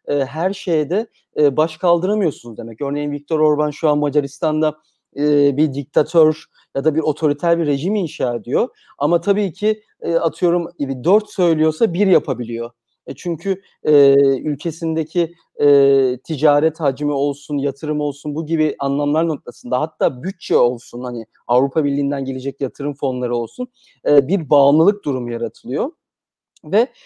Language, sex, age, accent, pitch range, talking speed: Turkish, male, 40-59, native, 135-185 Hz, 125 wpm